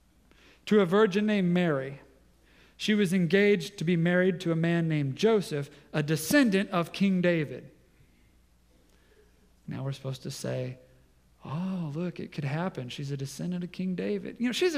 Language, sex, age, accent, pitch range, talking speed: English, male, 40-59, American, 150-205 Hz, 160 wpm